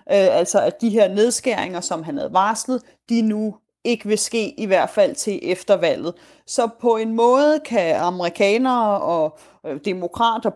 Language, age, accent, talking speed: Danish, 30-49, native, 160 wpm